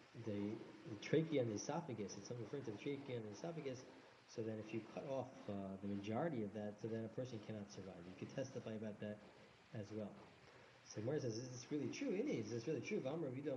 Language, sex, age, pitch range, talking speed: English, male, 40-59, 110-150 Hz, 225 wpm